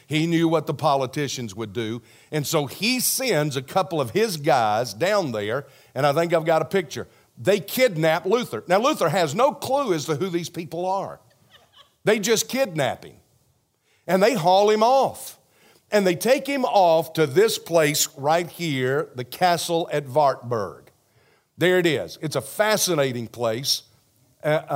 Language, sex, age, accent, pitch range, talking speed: English, male, 50-69, American, 140-170 Hz, 170 wpm